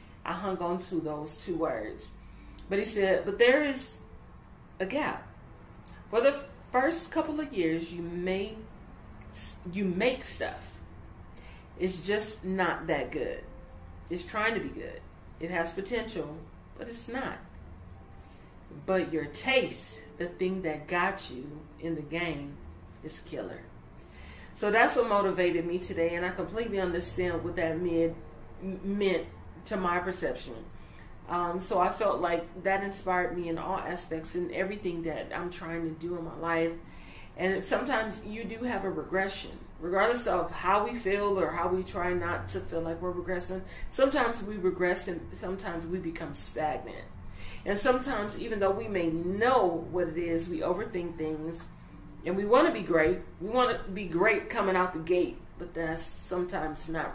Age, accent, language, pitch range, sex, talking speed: 40-59, American, English, 160-195 Hz, female, 165 wpm